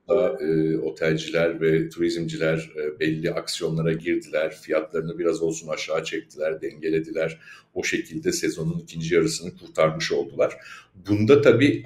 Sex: male